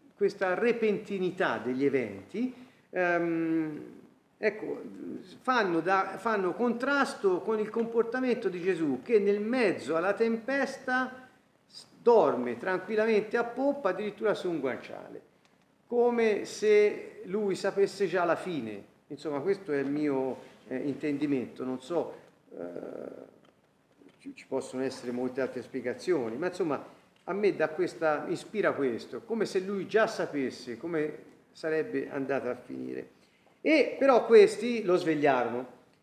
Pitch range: 145-235 Hz